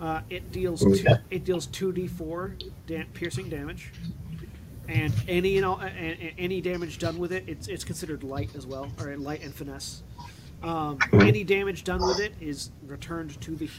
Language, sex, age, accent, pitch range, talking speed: English, male, 30-49, American, 115-165 Hz, 170 wpm